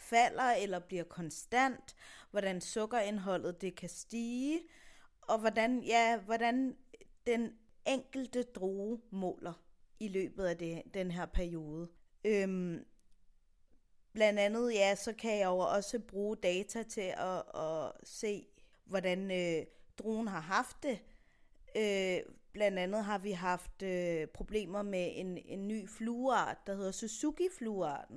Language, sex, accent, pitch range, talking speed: Danish, female, native, 185-225 Hz, 130 wpm